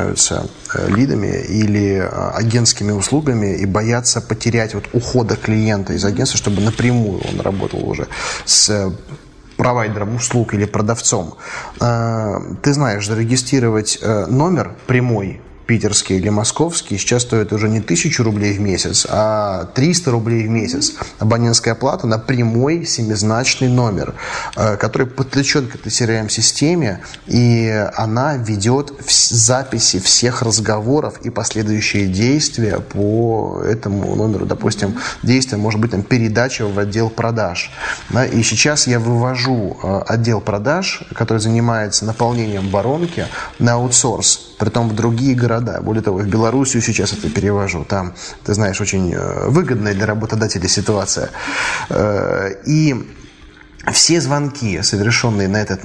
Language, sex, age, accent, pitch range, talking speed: Russian, male, 20-39, native, 105-125 Hz, 120 wpm